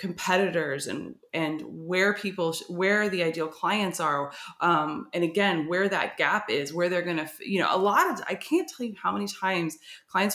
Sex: female